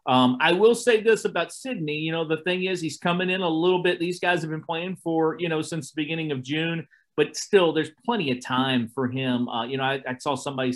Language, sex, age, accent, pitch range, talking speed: English, male, 40-59, American, 130-170 Hz, 255 wpm